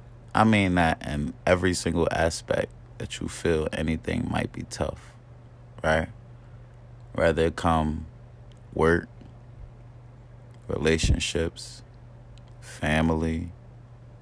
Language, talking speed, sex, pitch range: English, 90 wpm, male, 85-120 Hz